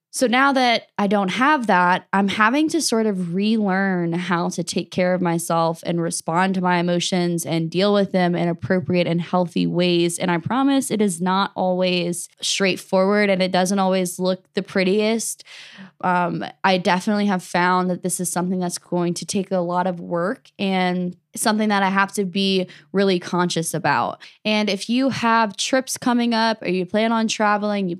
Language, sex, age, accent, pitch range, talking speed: English, female, 10-29, American, 180-215 Hz, 190 wpm